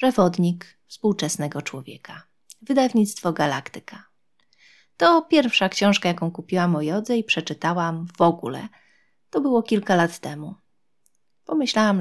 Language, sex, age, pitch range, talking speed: English, female, 30-49, 165-245 Hz, 110 wpm